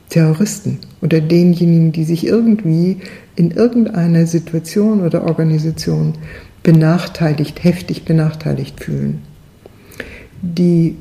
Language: German